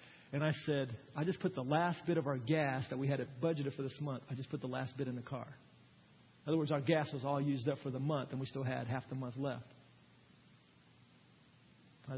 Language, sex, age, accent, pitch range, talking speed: English, male, 40-59, American, 130-160 Hz, 240 wpm